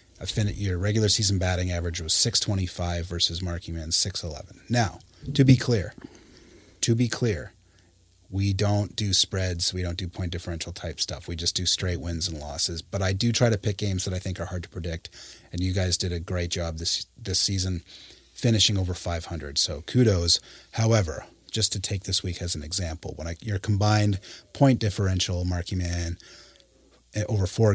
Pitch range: 85-105 Hz